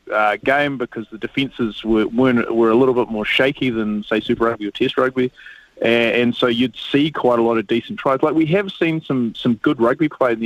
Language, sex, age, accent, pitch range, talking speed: English, male, 30-49, Australian, 110-140 Hz, 235 wpm